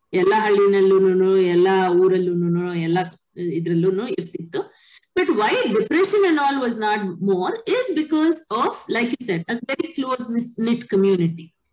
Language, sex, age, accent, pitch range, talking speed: Kannada, female, 20-39, native, 175-275 Hz, 95 wpm